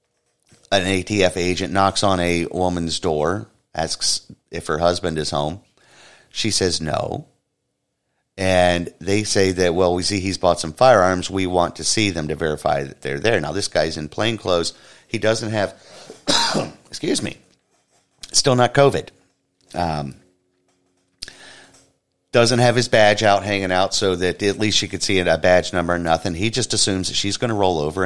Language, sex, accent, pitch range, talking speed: English, male, American, 80-100 Hz, 175 wpm